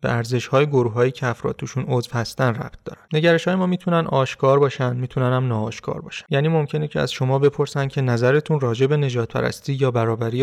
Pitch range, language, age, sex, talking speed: 120-145 Hz, Persian, 30-49, male, 180 wpm